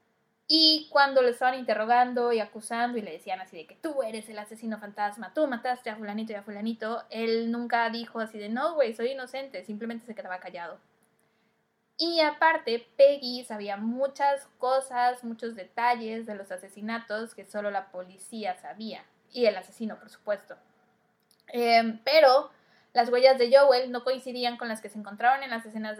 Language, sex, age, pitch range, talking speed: Spanish, female, 10-29, 215-260 Hz, 175 wpm